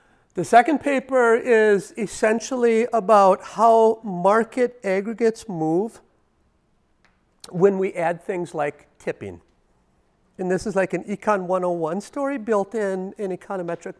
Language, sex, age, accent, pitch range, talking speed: English, male, 50-69, American, 185-230 Hz, 120 wpm